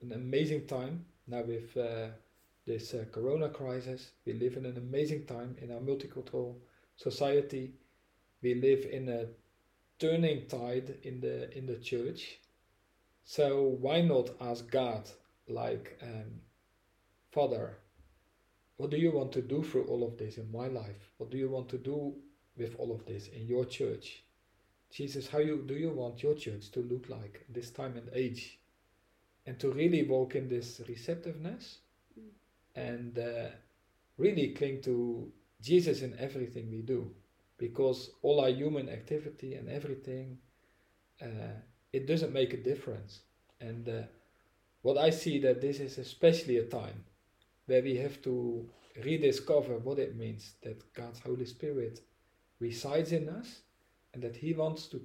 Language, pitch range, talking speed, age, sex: English, 115-140 Hz, 155 wpm, 40-59, male